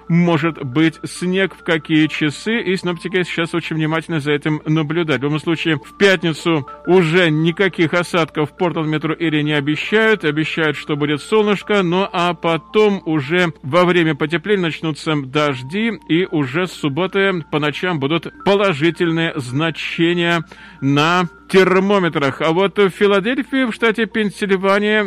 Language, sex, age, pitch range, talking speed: Russian, male, 40-59, 155-190 Hz, 140 wpm